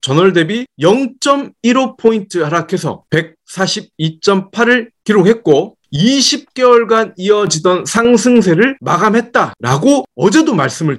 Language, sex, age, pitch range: Korean, male, 30-49, 175-265 Hz